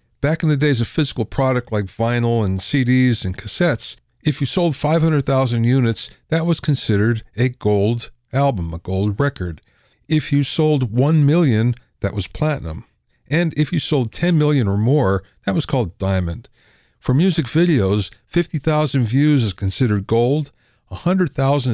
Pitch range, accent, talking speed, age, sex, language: 105-140 Hz, American, 155 wpm, 50-69, male, English